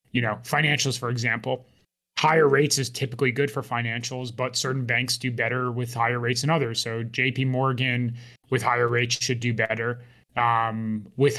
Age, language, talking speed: 20-39, English, 175 wpm